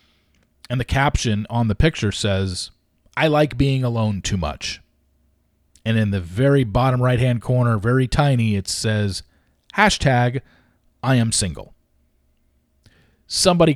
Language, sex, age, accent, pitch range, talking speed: English, male, 40-59, American, 95-130 Hz, 125 wpm